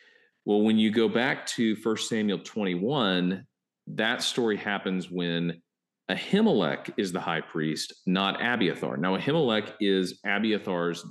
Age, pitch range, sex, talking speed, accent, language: 40-59, 90-115 Hz, male, 130 wpm, American, English